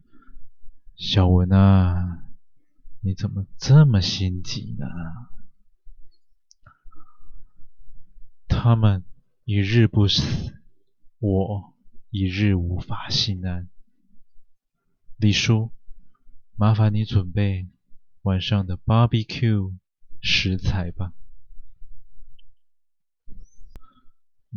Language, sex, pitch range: Chinese, male, 95-115 Hz